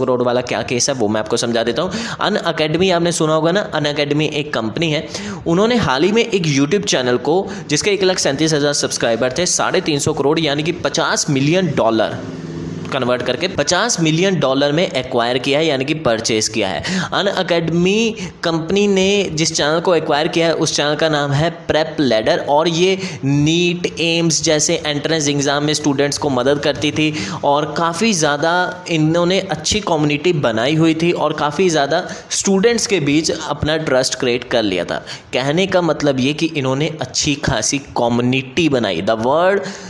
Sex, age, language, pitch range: male, 10-29, Hindi, 130-170 Hz